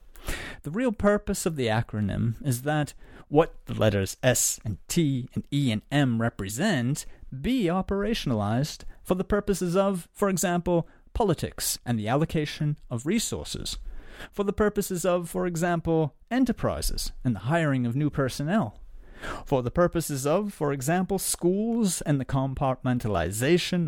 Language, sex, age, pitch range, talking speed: English, male, 30-49, 115-175 Hz, 140 wpm